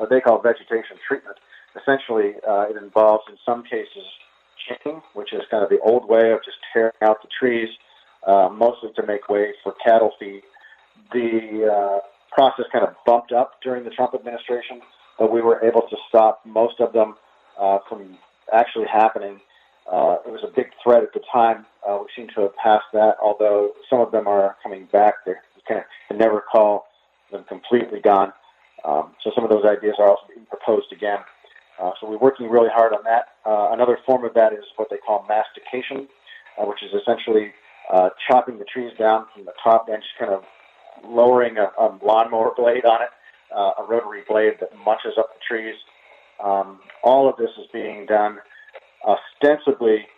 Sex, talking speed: male, 190 wpm